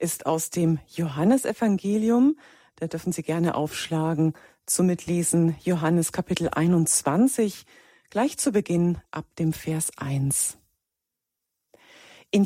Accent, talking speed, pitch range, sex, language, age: German, 105 wpm, 160-210 Hz, female, German, 40-59